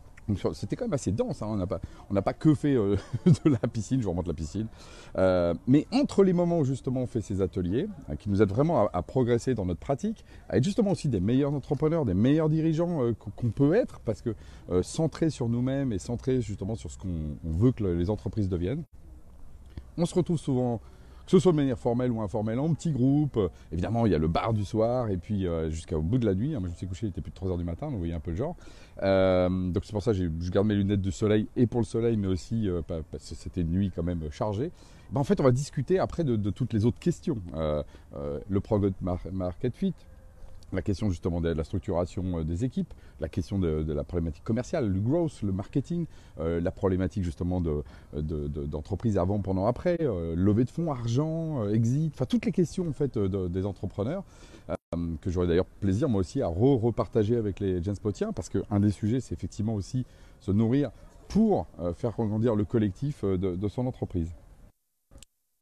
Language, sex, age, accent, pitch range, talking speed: French, male, 40-59, French, 90-130 Hz, 230 wpm